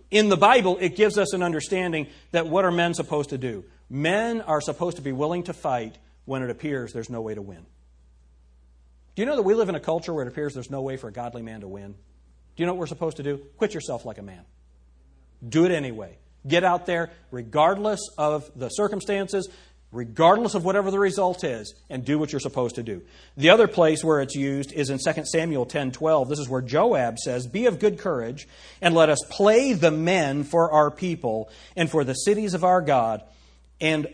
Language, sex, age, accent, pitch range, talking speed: English, male, 40-59, American, 110-170 Hz, 220 wpm